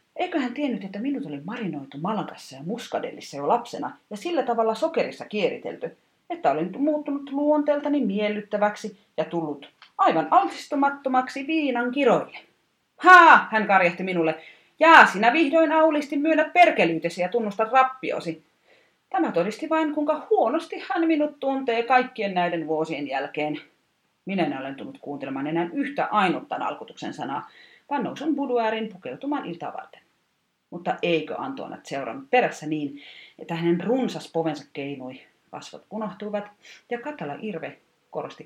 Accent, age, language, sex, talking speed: native, 30-49, Finnish, female, 135 wpm